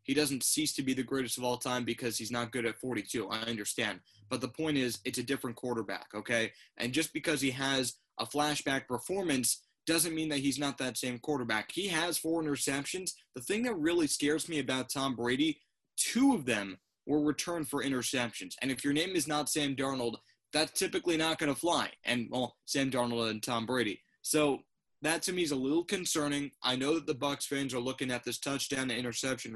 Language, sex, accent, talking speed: English, male, American, 210 wpm